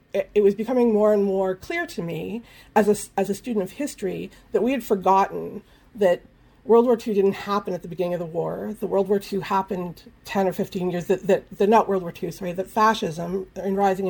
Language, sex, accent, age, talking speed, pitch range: English, female, American, 40-59, 220 wpm, 180-210 Hz